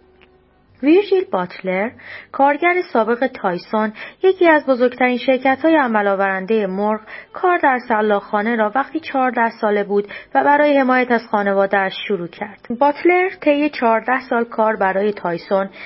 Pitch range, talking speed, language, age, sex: 205-275 Hz, 130 wpm, Persian, 30-49, female